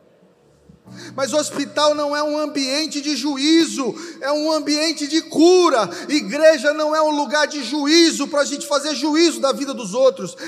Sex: male